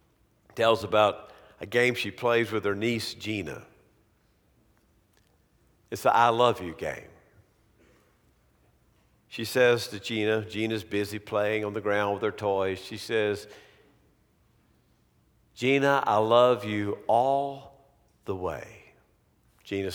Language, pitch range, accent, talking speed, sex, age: English, 105-120 Hz, American, 115 wpm, male, 50-69